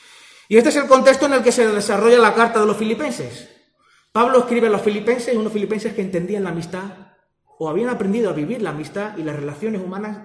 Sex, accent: male, Spanish